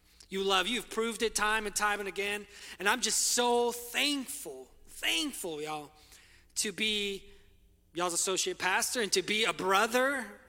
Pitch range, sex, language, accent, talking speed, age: 180-230 Hz, male, English, American, 155 wpm, 20-39